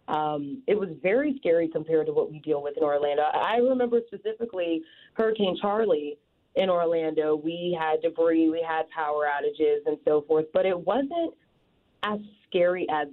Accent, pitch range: American, 150-210 Hz